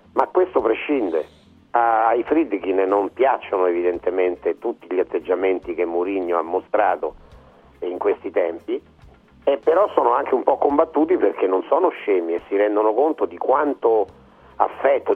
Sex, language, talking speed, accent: male, Italian, 145 wpm, native